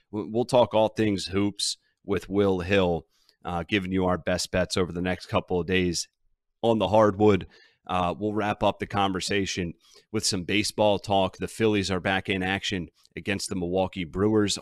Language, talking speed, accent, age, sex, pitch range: English, 175 wpm, American, 30-49, male, 85-100 Hz